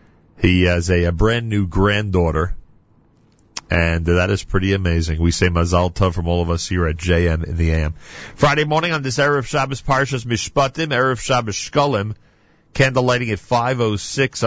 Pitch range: 90-120 Hz